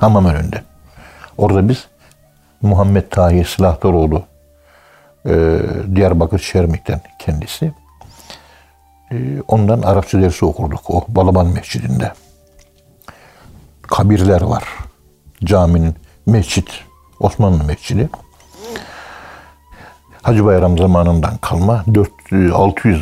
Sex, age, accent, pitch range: male, 60-79, native, 85-110 Hz